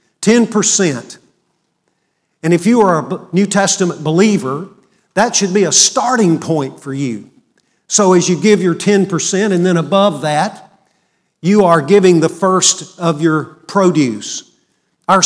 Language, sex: English, male